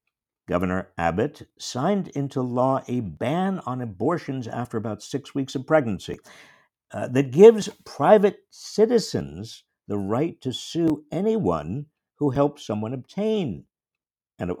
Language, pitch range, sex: English, 105-160 Hz, male